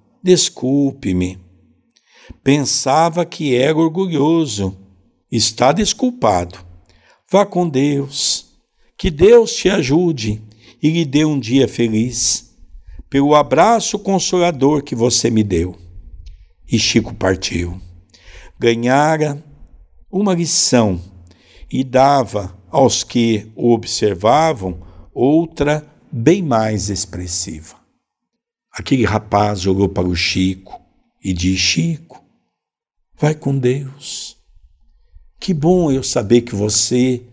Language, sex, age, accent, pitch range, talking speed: Portuguese, male, 60-79, Brazilian, 95-135 Hz, 100 wpm